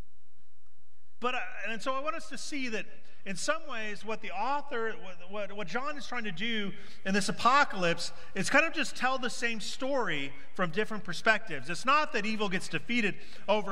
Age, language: 40-59, English